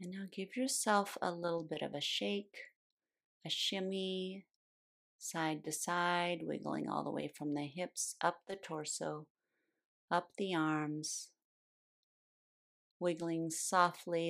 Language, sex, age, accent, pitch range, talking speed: English, female, 40-59, American, 155-195 Hz, 125 wpm